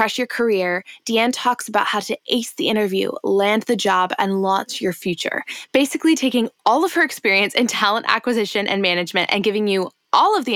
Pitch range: 190-250 Hz